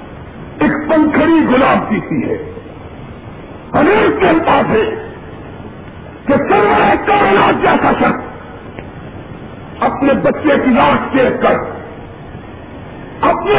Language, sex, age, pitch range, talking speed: Urdu, male, 50-69, 265-330 Hz, 80 wpm